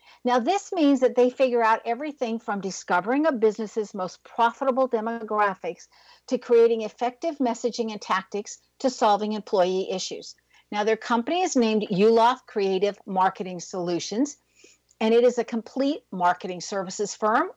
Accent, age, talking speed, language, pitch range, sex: American, 50-69, 145 wpm, English, 190-245 Hz, female